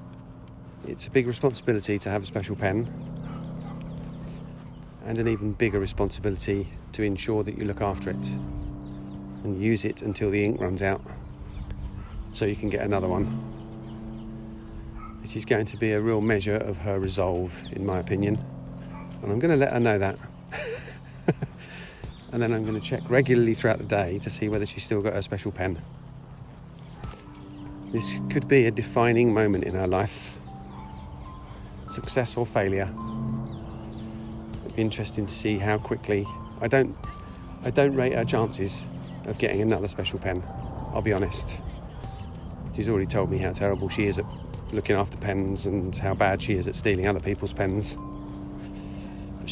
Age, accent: 40-59, British